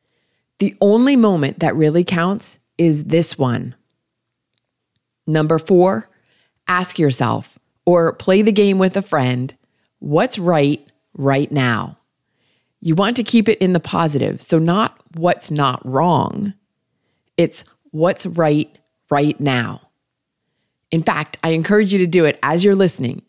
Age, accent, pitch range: 30-49, American, 140-190 Hz